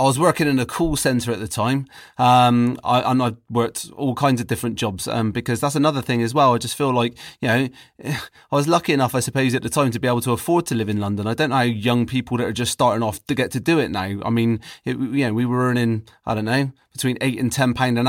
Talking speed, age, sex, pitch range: 275 wpm, 30-49, male, 115-135 Hz